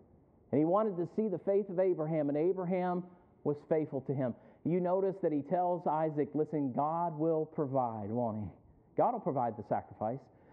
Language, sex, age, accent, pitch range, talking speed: English, male, 50-69, American, 135-180 Hz, 180 wpm